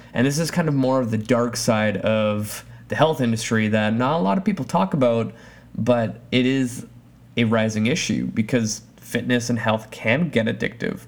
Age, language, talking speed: 20-39, English, 190 wpm